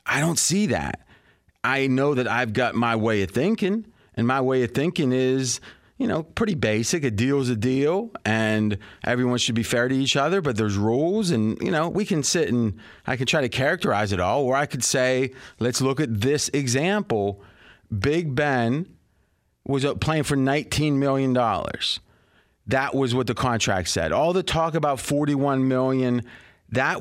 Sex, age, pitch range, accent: male, 30-49, 115-150 Hz, American